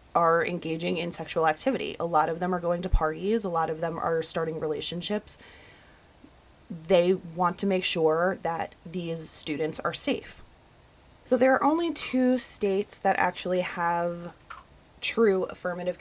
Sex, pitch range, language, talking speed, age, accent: female, 165-185 Hz, English, 155 wpm, 20-39, American